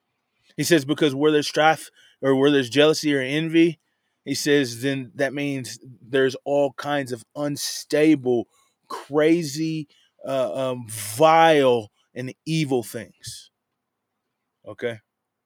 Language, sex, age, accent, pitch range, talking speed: English, male, 20-39, American, 130-160 Hz, 115 wpm